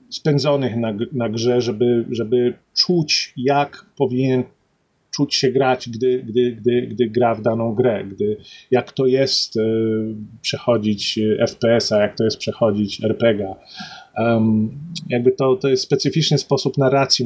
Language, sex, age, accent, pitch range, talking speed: Polish, male, 30-49, native, 115-140 Hz, 135 wpm